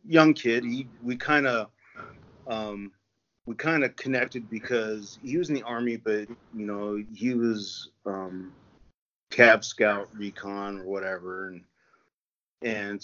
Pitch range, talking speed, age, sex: 100-120 Hz, 140 wpm, 40-59, male